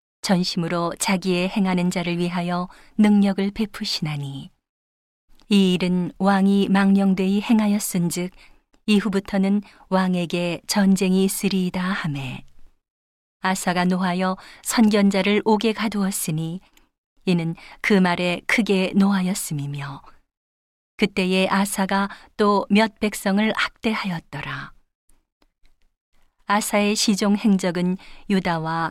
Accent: native